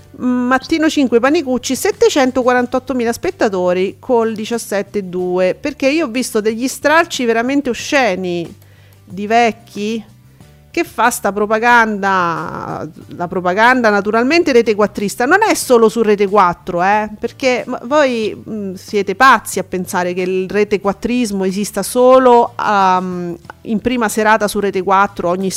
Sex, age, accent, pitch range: female, 40-59, native, 185-245 Hz